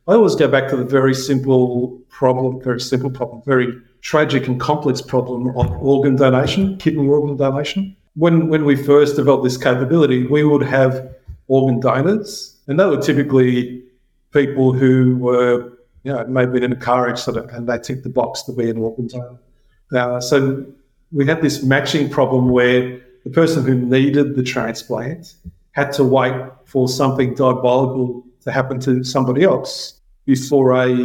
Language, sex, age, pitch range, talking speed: English, male, 50-69, 125-140 Hz, 165 wpm